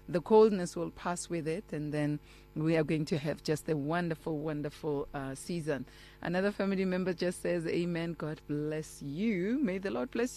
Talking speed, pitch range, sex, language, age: 185 wpm, 150-190 Hz, female, English, 30-49